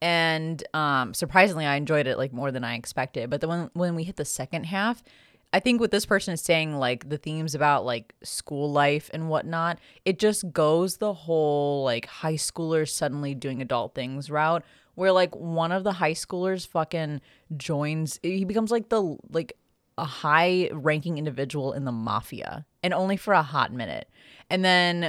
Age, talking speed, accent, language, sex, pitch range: 20-39, 185 wpm, American, English, female, 140-180 Hz